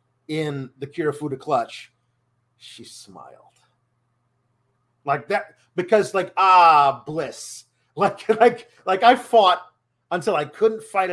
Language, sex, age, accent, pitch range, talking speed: English, male, 40-59, American, 125-185 Hz, 115 wpm